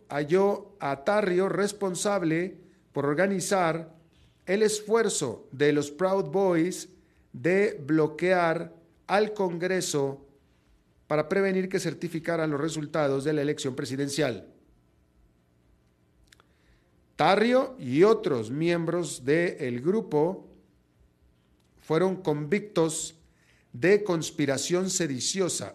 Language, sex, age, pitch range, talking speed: Spanish, male, 40-59, 125-185 Hz, 85 wpm